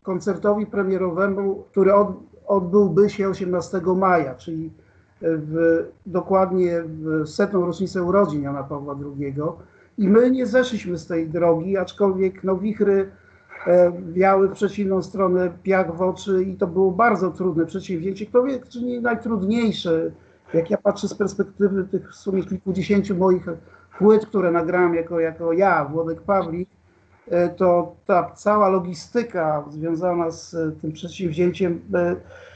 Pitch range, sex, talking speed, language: 165-200 Hz, male, 135 wpm, Polish